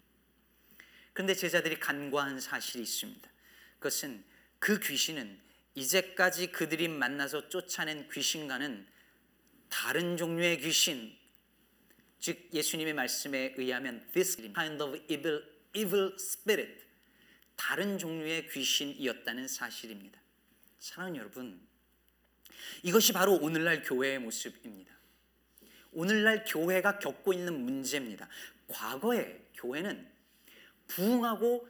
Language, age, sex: Korean, 40-59, male